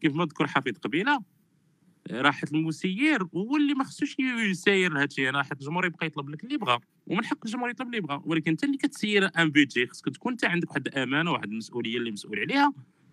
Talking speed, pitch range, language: 195 wpm, 125-185 Hz, Arabic